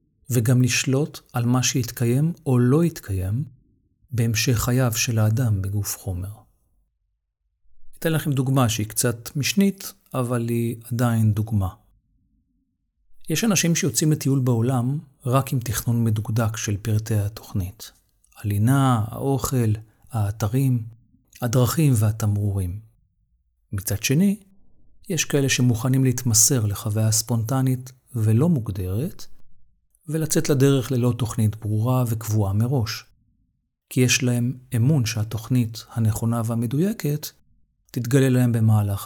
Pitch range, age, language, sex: 105-130 Hz, 40-59, Hebrew, male